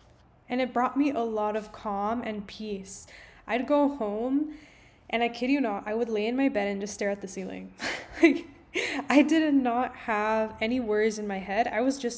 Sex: female